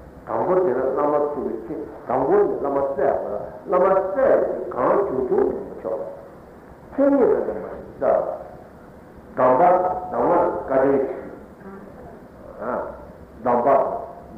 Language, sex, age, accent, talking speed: Italian, male, 60-79, Indian, 90 wpm